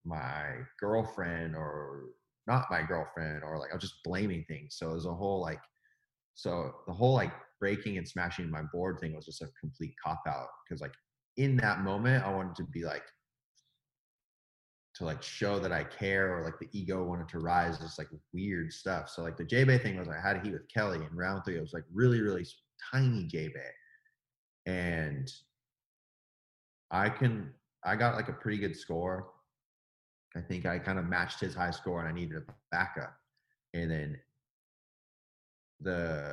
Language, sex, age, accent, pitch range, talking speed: English, male, 30-49, American, 80-110 Hz, 180 wpm